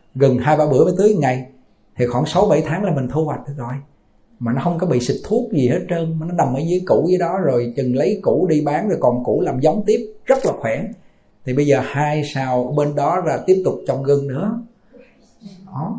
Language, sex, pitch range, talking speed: Vietnamese, male, 130-175 Hz, 240 wpm